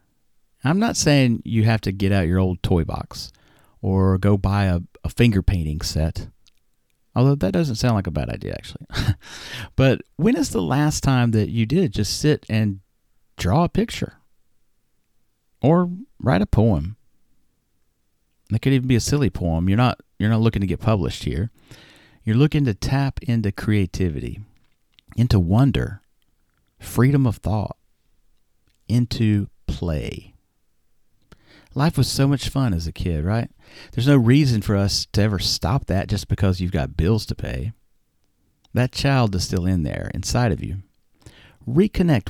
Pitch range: 95-125 Hz